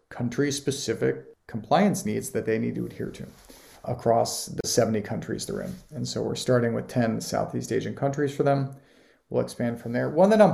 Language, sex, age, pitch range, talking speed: English, male, 40-59, 120-165 Hz, 190 wpm